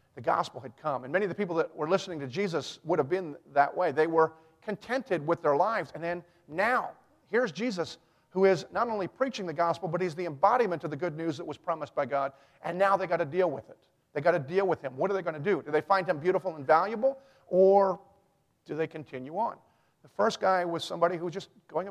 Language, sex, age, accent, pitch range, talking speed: English, male, 50-69, American, 145-190 Hz, 250 wpm